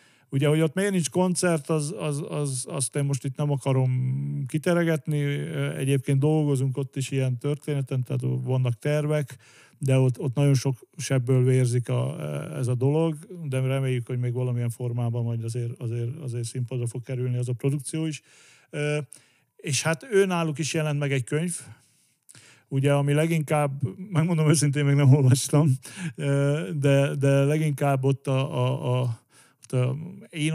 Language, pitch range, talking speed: Hungarian, 130-150 Hz, 155 wpm